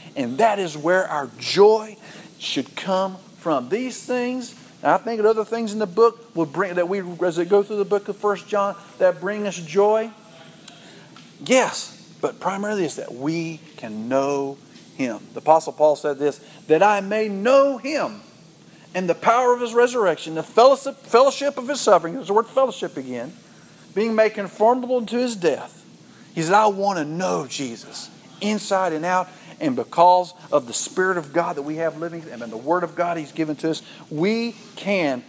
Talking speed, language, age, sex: 190 wpm, English, 50-69, male